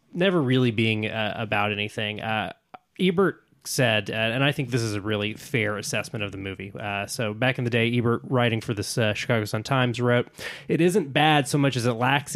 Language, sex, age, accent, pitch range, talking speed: English, male, 20-39, American, 105-135 Hz, 220 wpm